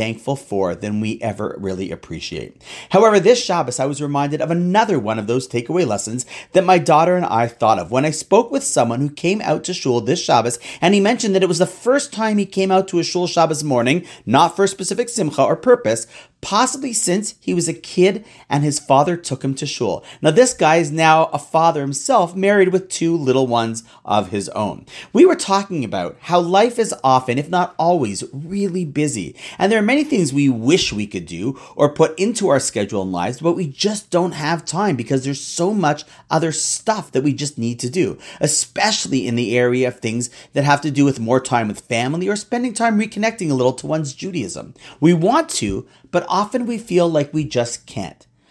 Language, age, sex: English, 30-49, male